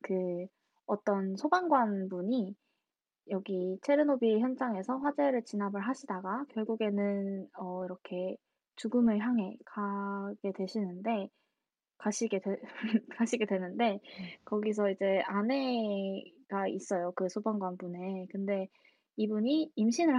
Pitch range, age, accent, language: 200-250 Hz, 20-39, native, Korean